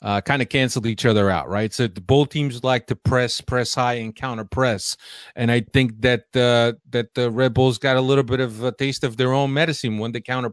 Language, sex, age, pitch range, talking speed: English, male, 30-49, 115-140 Hz, 250 wpm